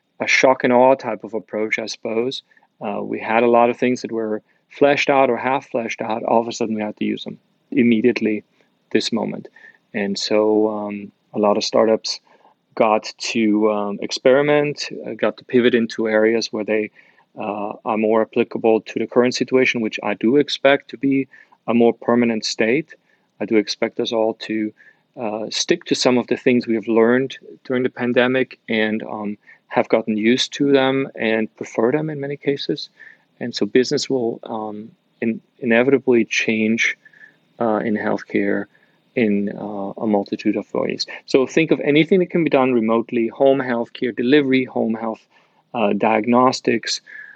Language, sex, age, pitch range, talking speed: English, male, 40-59, 110-130 Hz, 170 wpm